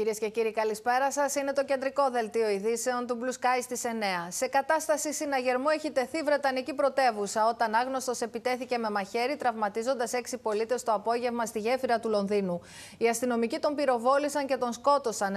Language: Greek